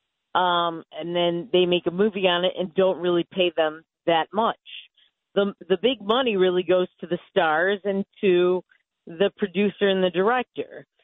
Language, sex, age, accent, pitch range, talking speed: English, female, 40-59, American, 175-215 Hz, 175 wpm